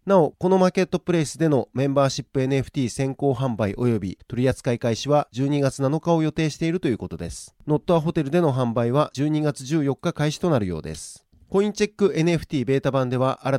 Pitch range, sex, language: 130-160 Hz, male, Japanese